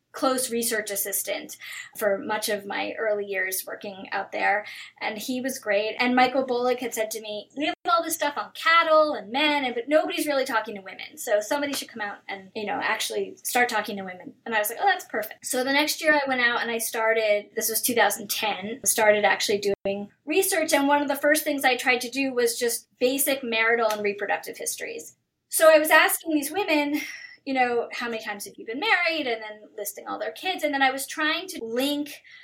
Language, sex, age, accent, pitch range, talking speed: English, female, 10-29, American, 215-300 Hz, 220 wpm